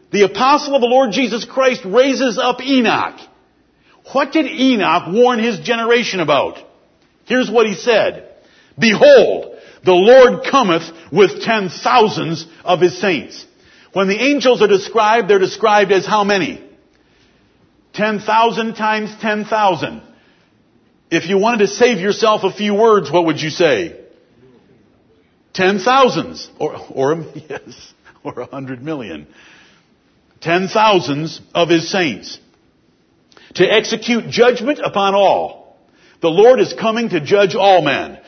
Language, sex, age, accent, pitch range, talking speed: English, male, 50-69, American, 180-235 Hz, 135 wpm